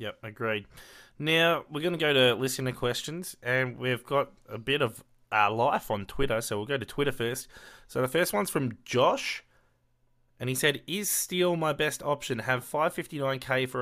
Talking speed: 195 wpm